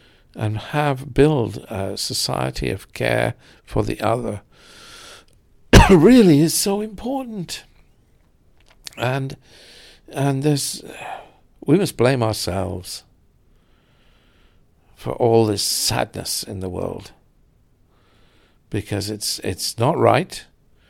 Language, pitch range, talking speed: English, 95-115 Hz, 95 wpm